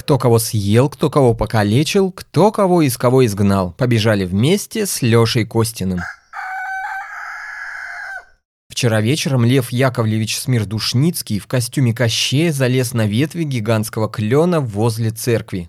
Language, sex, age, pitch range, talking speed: Russian, male, 20-39, 110-145 Hz, 120 wpm